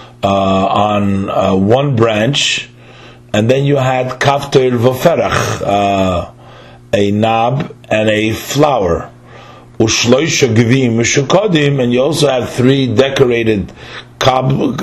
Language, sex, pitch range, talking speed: English, male, 100-140 Hz, 90 wpm